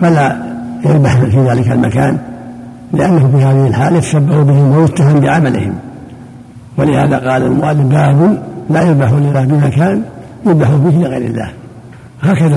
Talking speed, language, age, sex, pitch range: 125 wpm, Arabic, 60-79, male, 125-150 Hz